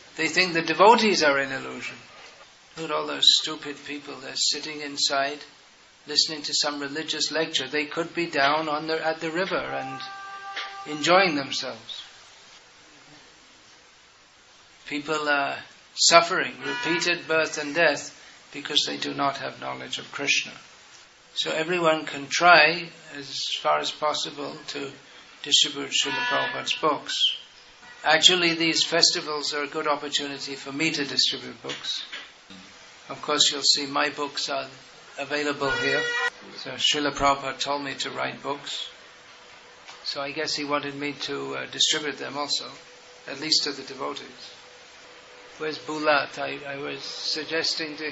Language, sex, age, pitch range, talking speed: English, male, 60-79, 140-160 Hz, 140 wpm